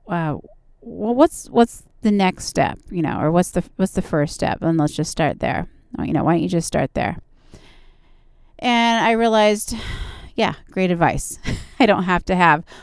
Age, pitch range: 30-49, 155-200 Hz